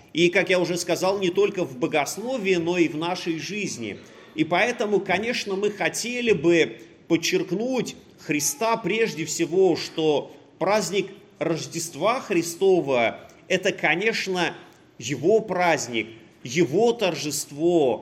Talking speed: 115 wpm